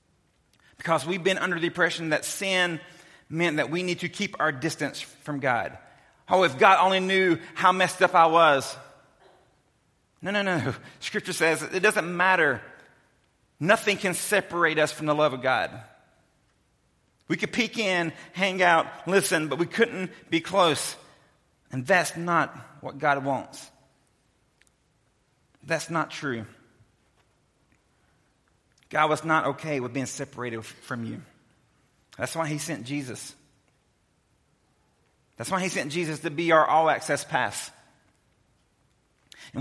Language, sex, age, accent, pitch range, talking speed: English, male, 40-59, American, 130-175 Hz, 140 wpm